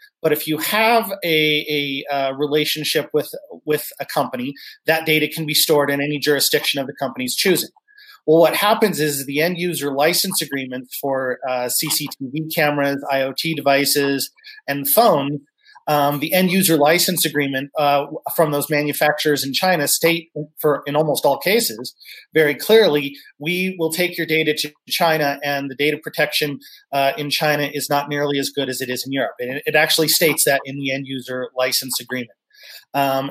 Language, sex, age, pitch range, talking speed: English, male, 30-49, 140-165 Hz, 175 wpm